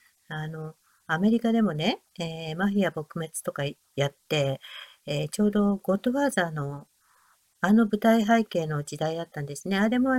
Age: 50-69